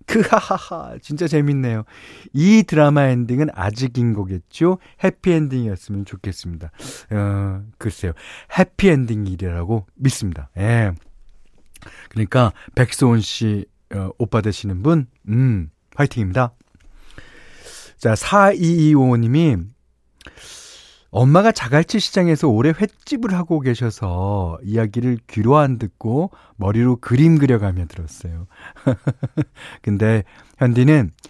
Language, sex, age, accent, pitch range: Korean, male, 40-59, native, 100-160 Hz